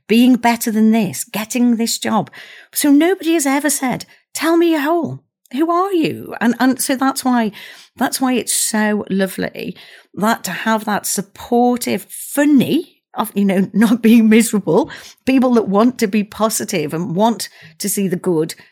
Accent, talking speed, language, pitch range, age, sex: British, 170 wpm, English, 180-245 Hz, 50-69, female